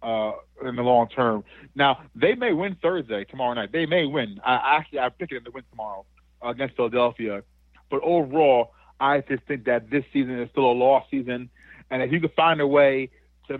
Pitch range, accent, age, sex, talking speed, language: 120-145 Hz, American, 30-49, male, 210 wpm, English